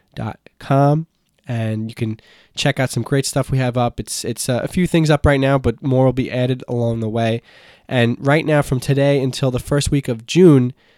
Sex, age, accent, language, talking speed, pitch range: male, 20-39, American, English, 225 wpm, 115-135 Hz